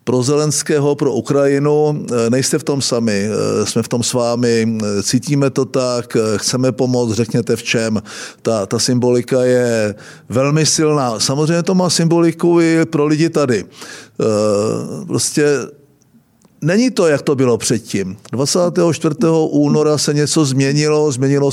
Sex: male